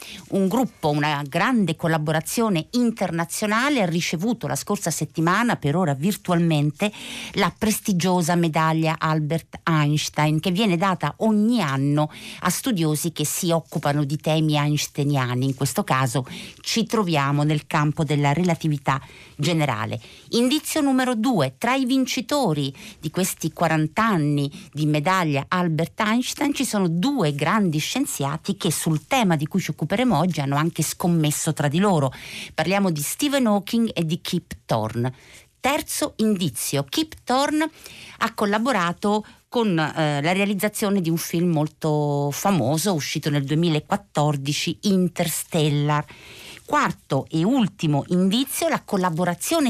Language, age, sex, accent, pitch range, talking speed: Italian, 50-69, female, native, 150-210 Hz, 130 wpm